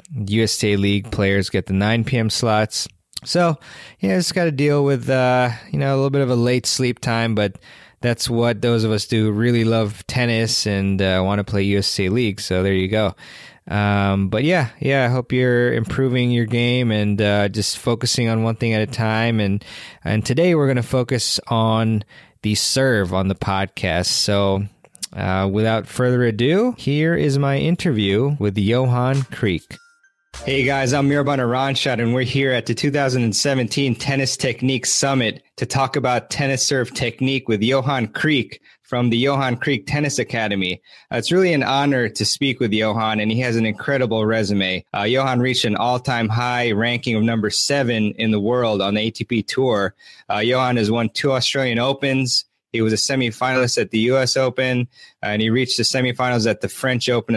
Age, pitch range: 20-39, 110-130 Hz